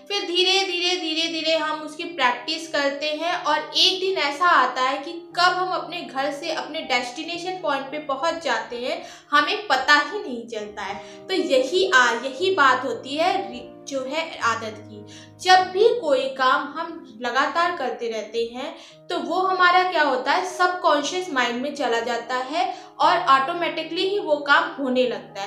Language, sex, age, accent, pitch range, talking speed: Hindi, female, 20-39, native, 260-345 Hz, 175 wpm